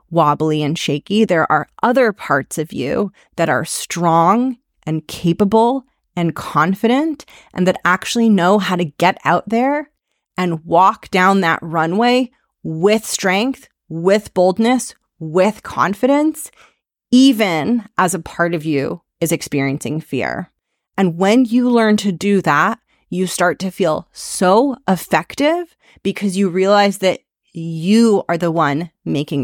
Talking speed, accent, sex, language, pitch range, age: 135 wpm, American, female, English, 165-220 Hz, 30-49